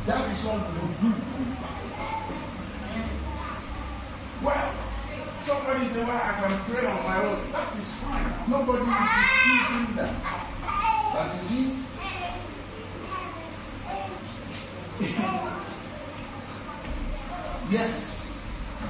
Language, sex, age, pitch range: English, male, 40-59, 165-245 Hz